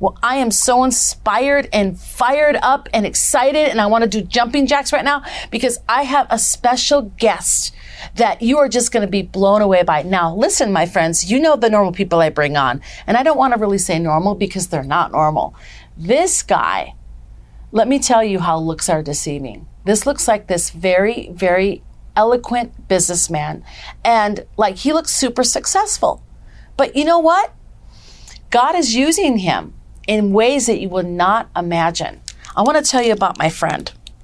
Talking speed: 185 wpm